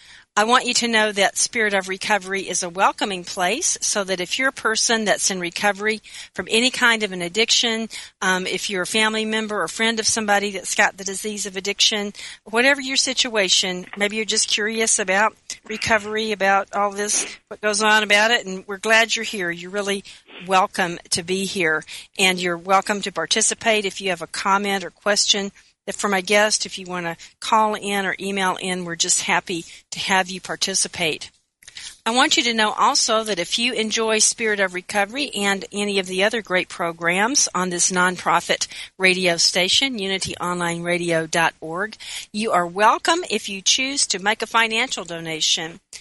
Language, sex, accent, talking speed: English, female, American, 185 wpm